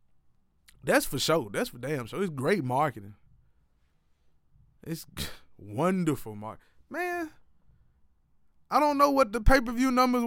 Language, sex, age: English, male, 20-39